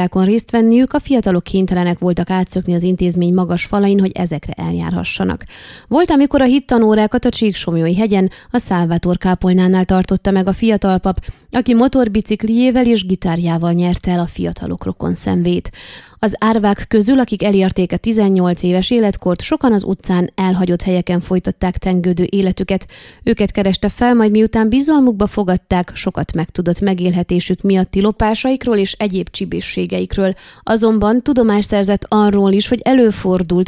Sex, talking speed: female, 140 wpm